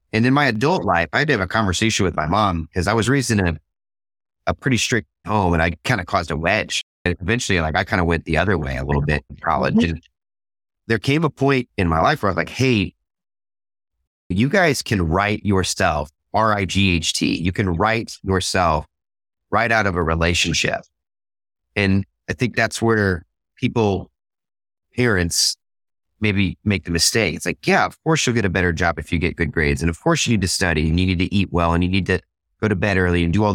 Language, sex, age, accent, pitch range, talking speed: English, male, 30-49, American, 85-110 Hz, 220 wpm